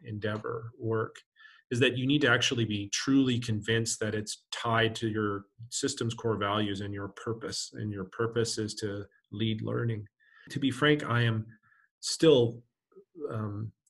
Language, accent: English, American